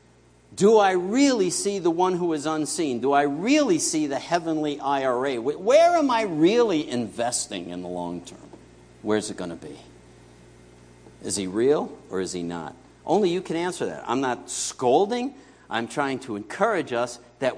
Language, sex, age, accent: English, male, 50-69, American